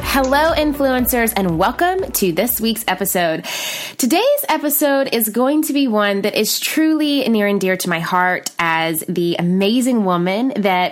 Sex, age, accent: female, 20-39, American